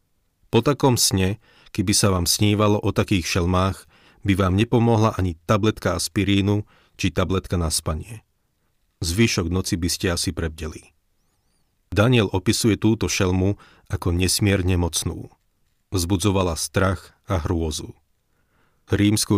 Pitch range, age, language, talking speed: 90-105 Hz, 40-59, Slovak, 120 wpm